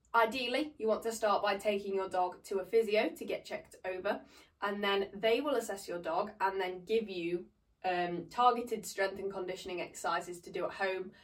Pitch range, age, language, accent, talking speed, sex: 185-215 Hz, 20-39, English, British, 200 wpm, female